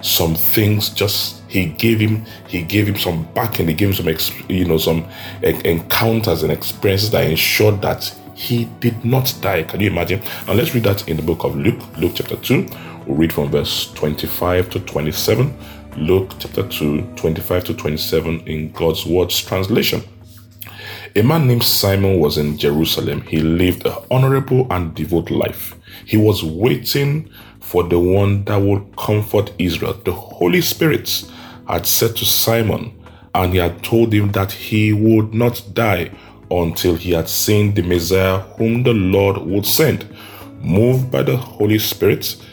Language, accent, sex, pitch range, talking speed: English, Nigerian, male, 85-110 Hz, 165 wpm